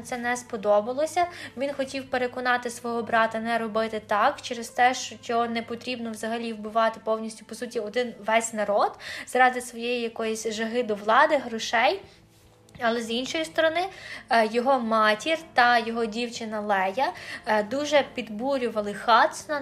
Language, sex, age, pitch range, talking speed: Ukrainian, female, 20-39, 225-260 Hz, 135 wpm